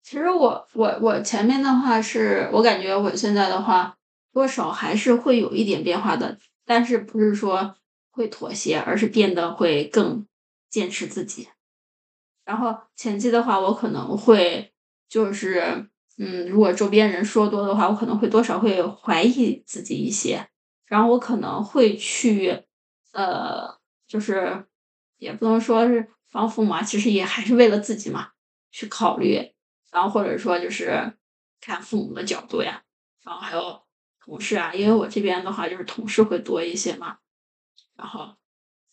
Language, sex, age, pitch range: Chinese, female, 20-39, 195-230 Hz